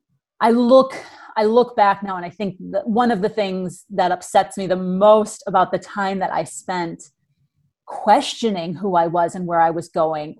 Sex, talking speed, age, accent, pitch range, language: female, 195 wpm, 30-49, American, 175-210 Hz, English